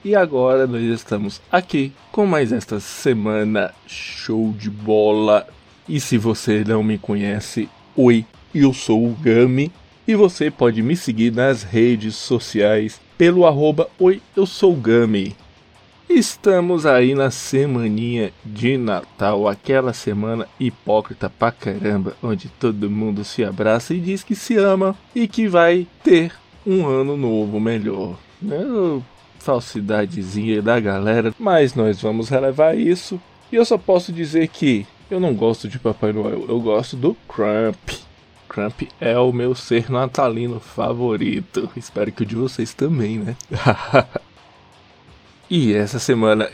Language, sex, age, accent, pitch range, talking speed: Portuguese, male, 20-39, Brazilian, 110-155 Hz, 140 wpm